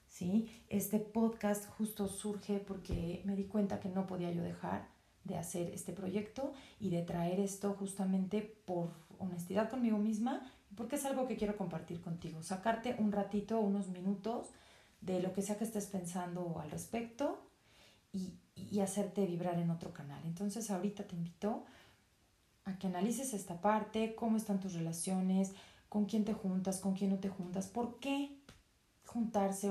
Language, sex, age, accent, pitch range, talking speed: Spanish, female, 40-59, Mexican, 175-210 Hz, 160 wpm